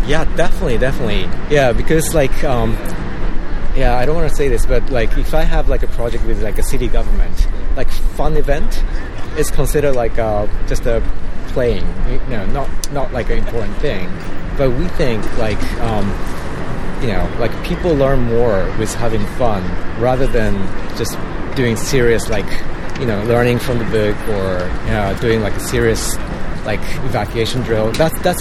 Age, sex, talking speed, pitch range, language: 30-49, male, 175 wpm, 95-120 Hz, English